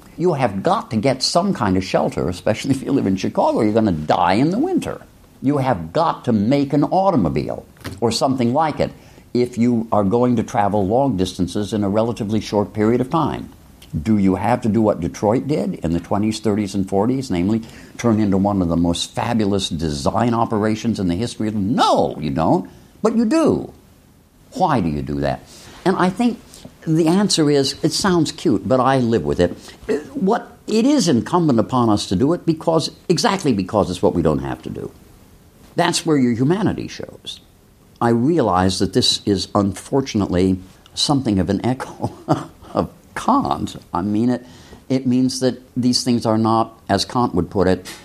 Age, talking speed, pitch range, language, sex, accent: 60-79, 195 wpm, 95-130 Hz, English, male, American